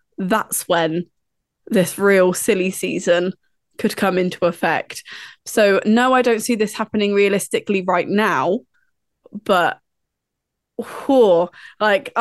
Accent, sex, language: British, female, English